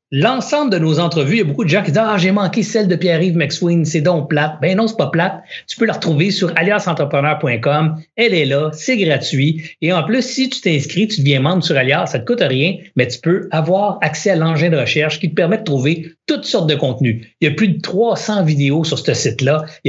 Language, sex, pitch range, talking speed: French, male, 135-170 Hz, 255 wpm